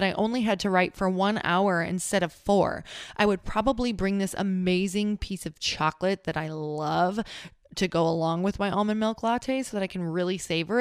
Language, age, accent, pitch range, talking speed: English, 20-39, American, 165-200 Hz, 205 wpm